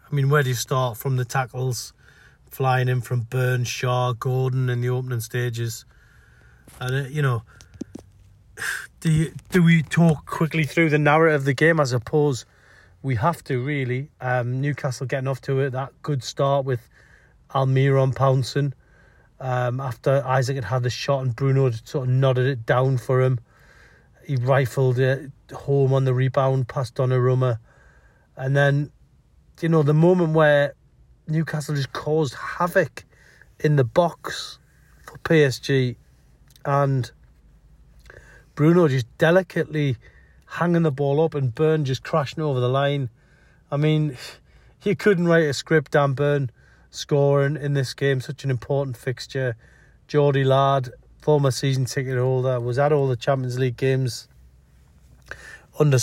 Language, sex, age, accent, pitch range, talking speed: English, male, 30-49, British, 125-145 Hz, 155 wpm